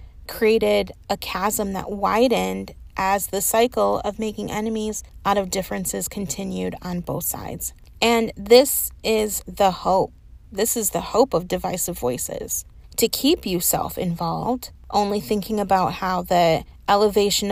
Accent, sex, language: American, female, English